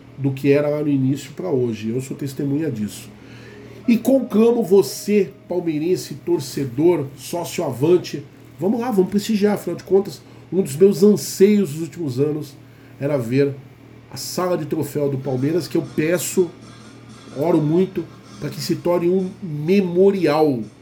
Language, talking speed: Portuguese, 150 wpm